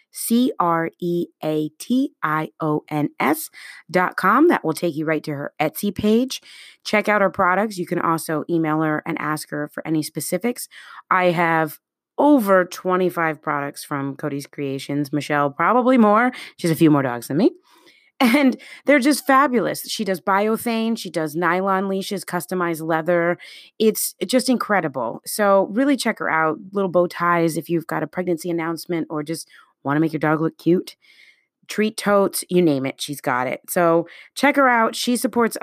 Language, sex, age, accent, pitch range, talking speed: English, female, 30-49, American, 160-210 Hz, 165 wpm